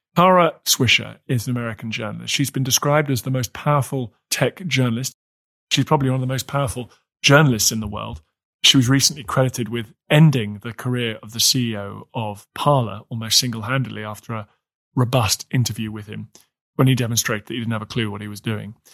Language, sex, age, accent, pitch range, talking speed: English, male, 30-49, British, 115-135 Hz, 190 wpm